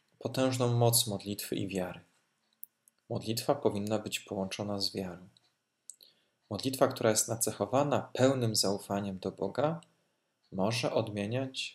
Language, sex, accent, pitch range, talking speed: Polish, male, native, 100-125 Hz, 105 wpm